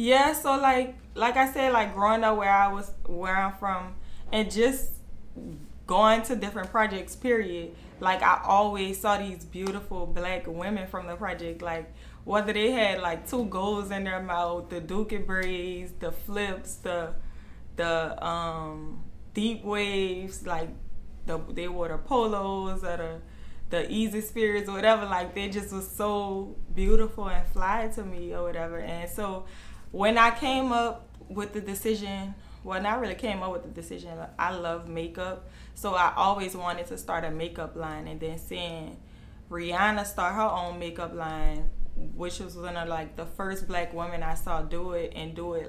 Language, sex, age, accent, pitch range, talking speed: English, female, 20-39, American, 170-210 Hz, 175 wpm